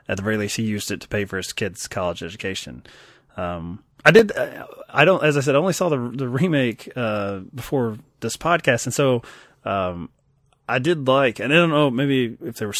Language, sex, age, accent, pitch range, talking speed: English, male, 20-39, American, 105-140 Hz, 220 wpm